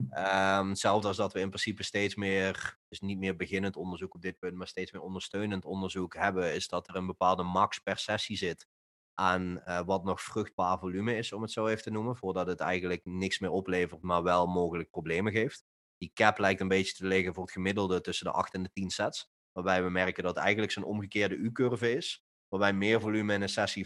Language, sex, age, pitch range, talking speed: Dutch, male, 30-49, 90-100 Hz, 225 wpm